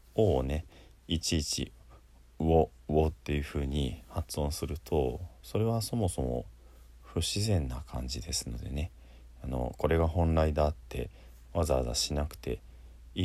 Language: Japanese